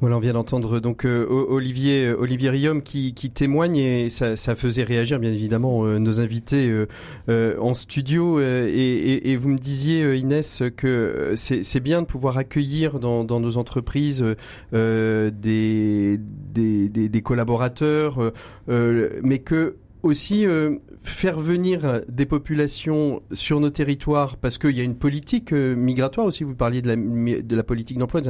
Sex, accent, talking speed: male, French, 170 wpm